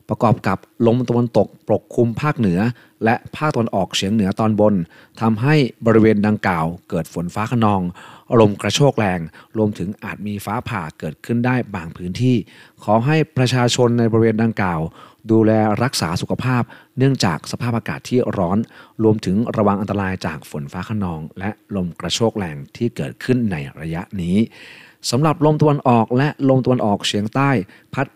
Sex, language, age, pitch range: male, Thai, 30-49, 100-125 Hz